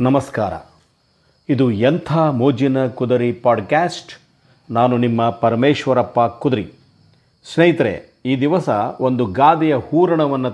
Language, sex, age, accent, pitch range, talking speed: Kannada, male, 50-69, native, 120-145 Hz, 90 wpm